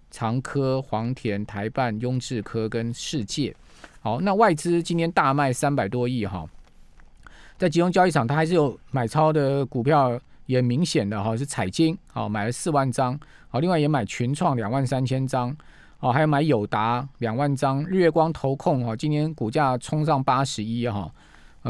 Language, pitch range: Chinese, 115-150 Hz